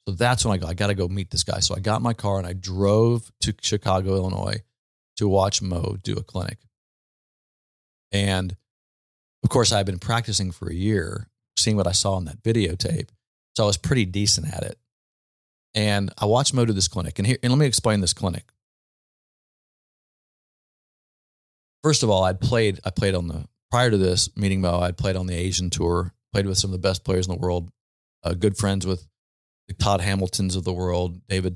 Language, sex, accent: English, male, American